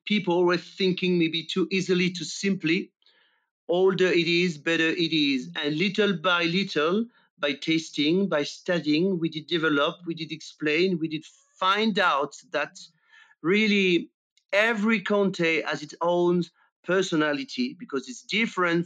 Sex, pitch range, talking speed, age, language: male, 160-190 Hz, 135 wpm, 40-59, English